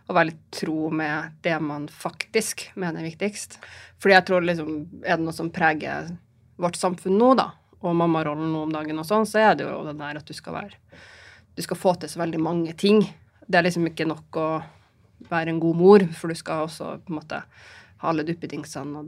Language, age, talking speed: English, 30-49, 220 wpm